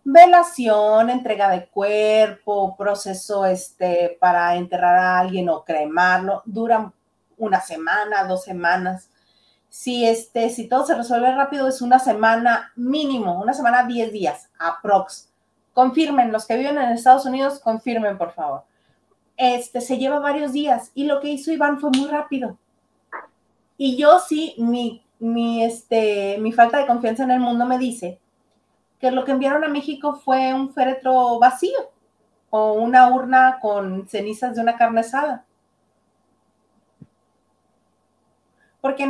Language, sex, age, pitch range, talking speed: Spanish, female, 30-49, 215-265 Hz, 140 wpm